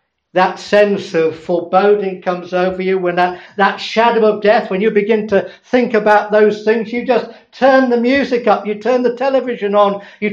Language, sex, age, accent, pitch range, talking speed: English, male, 50-69, British, 180-230 Hz, 190 wpm